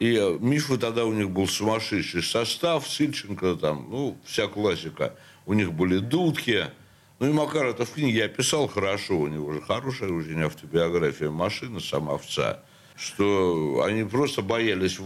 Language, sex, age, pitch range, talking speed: Russian, male, 60-79, 85-115 Hz, 160 wpm